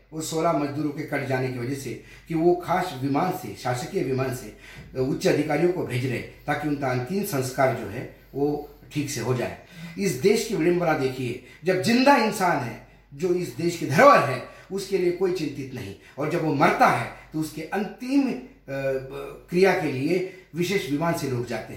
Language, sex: Hindi, male